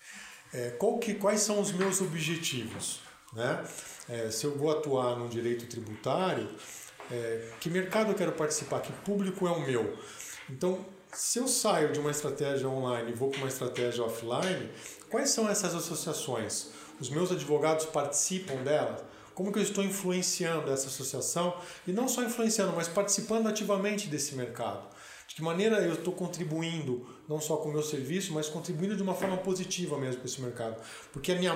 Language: Portuguese